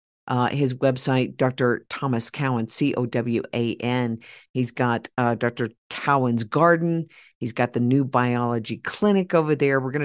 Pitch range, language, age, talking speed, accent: 125-160 Hz, English, 50-69, 135 wpm, American